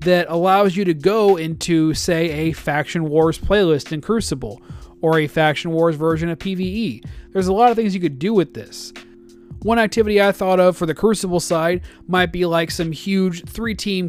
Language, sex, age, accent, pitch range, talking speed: English, male, 30-49, American, 155-185 Hz, 190 wpm